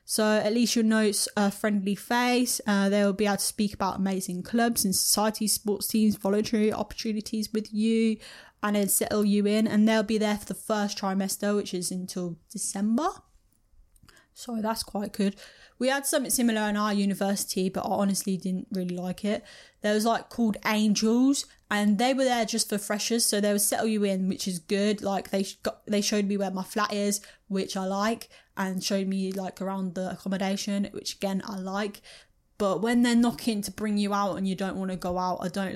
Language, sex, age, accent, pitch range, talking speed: English, female, 10-29, British, 195-230 Hz, 210 wpm